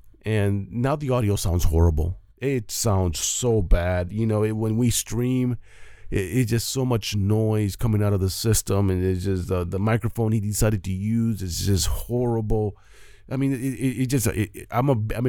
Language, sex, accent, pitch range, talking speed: English, male, American, 95-150 Hz, 190 wpm